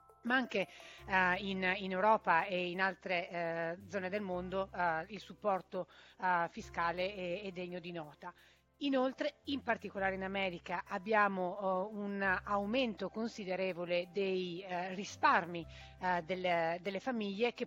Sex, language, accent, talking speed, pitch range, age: female, Italian, native, 115 wpm, 185-225 Hz, 30-49